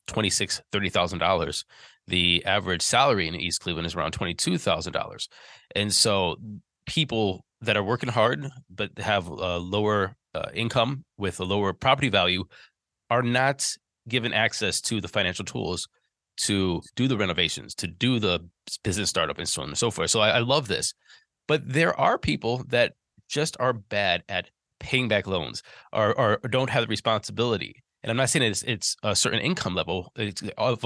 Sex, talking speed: male, 175 wpm